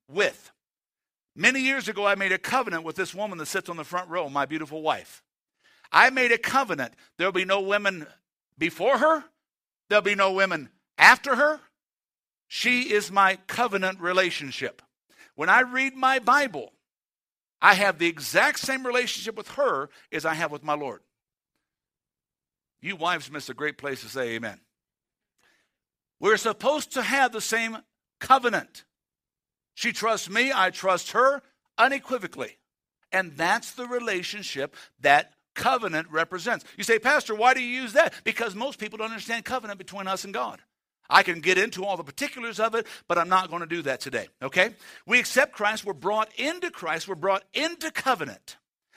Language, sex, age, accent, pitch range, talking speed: English, male, 60-79, American, 185-255 Hz, 170 wpm